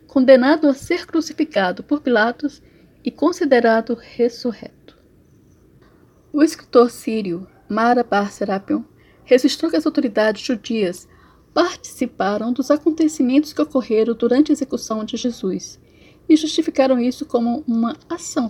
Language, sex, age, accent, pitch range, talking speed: Portuguese, female, 10-29, Brazilian, 220-285 Hz, 115 wpm